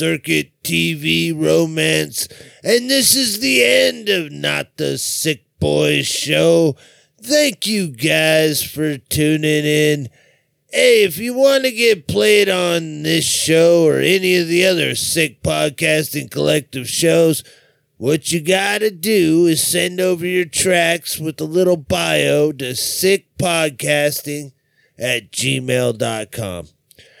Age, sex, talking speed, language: 30-49, male, 125 wpm, English